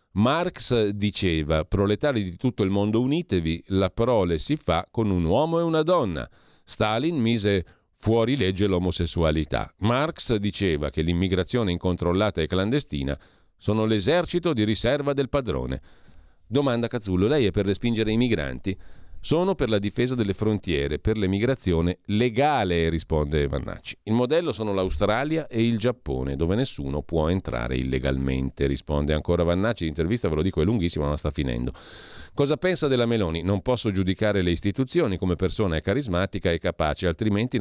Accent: native